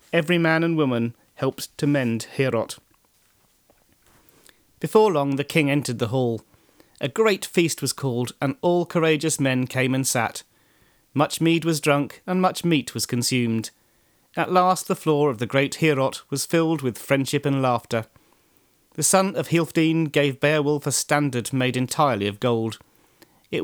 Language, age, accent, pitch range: English, 40-59, British, 120-160 Hz